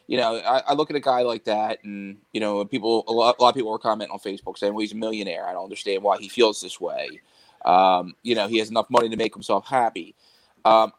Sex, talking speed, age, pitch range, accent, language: male, 270 wpm, 20-39, 110-130 Hz, American, English